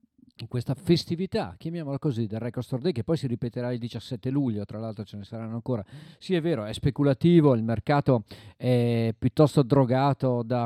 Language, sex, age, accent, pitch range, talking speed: Italian, male, 40-59, native, 115-145 Hz, 185 wpm